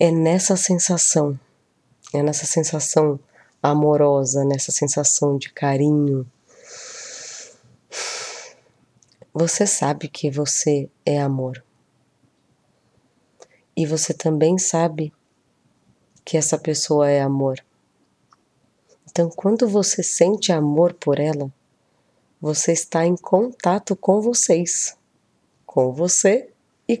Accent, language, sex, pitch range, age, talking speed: Brazilian, Portuguese, female, 150-175 Hz, 20-39, 95 wpm